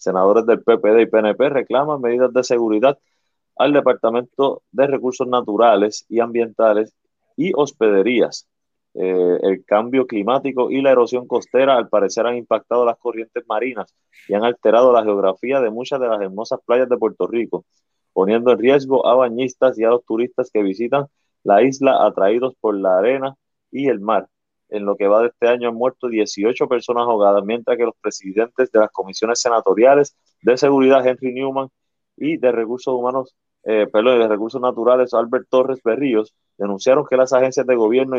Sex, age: male, 30-49